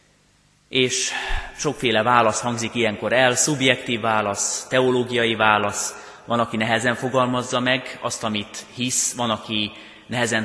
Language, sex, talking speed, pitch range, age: Hungarian, male, 120 wpm, 100-120 Hz, 30-49